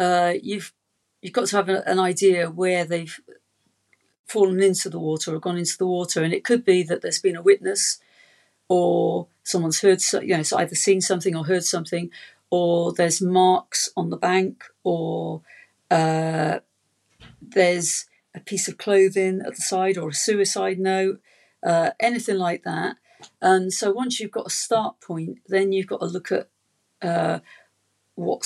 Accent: British